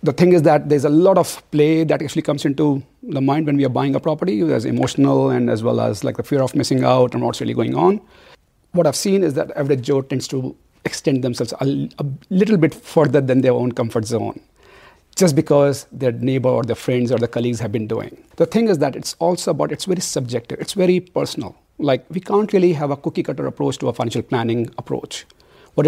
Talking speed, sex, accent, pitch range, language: 230 wpm, male, Indian, 130-160 Hz, English